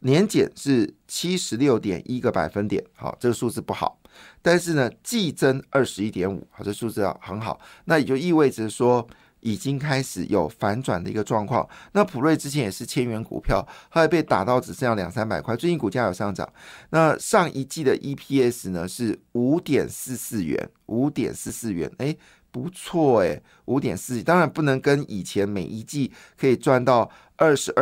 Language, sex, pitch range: Chinese, male, 105-145 Hz